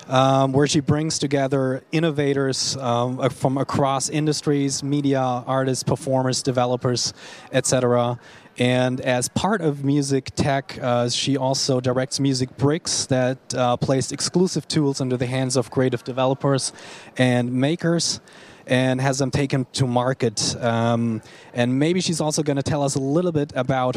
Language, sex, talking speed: English, male, 150 wpm